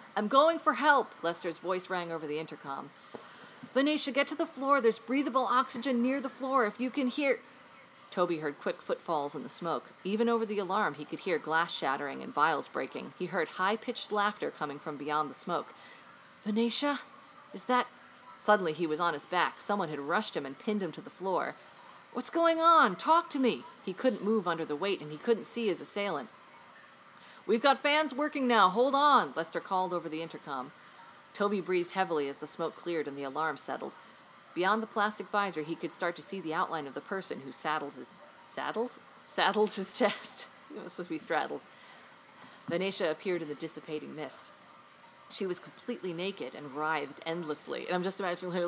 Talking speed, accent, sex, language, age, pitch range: 195 wpm, American, female, English, 40-59, 165-240 Hz